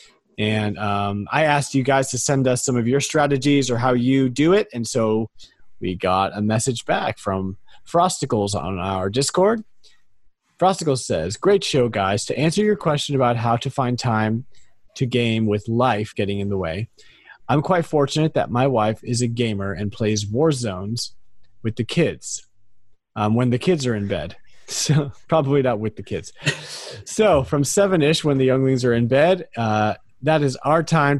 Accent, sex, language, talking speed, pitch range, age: American, male, English, 185 wpm, 105-145 Hz, 30-49